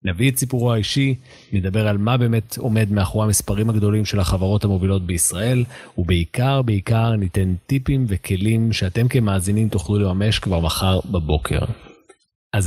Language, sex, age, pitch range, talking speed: Hebrew, male, 40-59, 95-115 Hz, 135 wpm